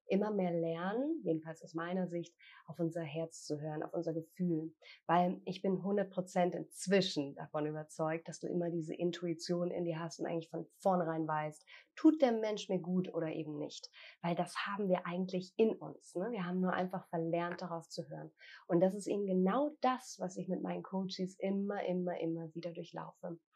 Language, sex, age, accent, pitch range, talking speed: German, female, 30-49, German, 165-195 Hz, 190 wpm